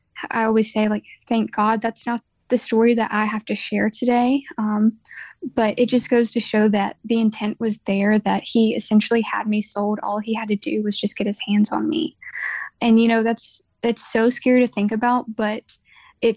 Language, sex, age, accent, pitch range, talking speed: English, female, 10-29, American, 215-235 Hz, 215 wpm